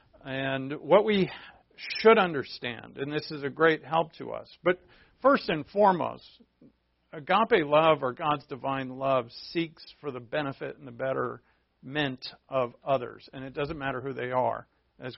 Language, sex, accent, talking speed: English, male, American, 160 wpm